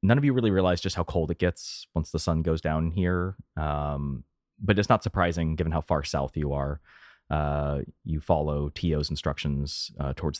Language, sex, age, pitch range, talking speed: English, male, 30-49, 75-90 Hz, 195 wpm